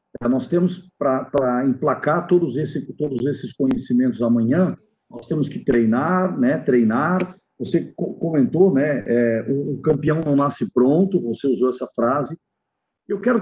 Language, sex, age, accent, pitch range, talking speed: Portuguese, male, 50-69, Brazilian, 150-210 Hz, 130 wpm